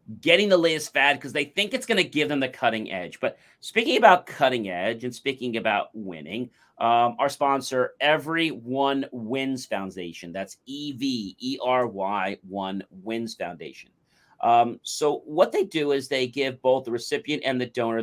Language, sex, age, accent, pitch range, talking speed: English, male, 40-59, American, 115-155 Hz, 165 wpm